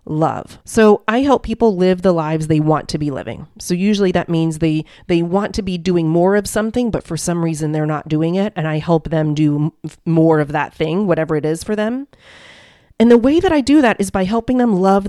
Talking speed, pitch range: 240 wpm, 160-220 Hz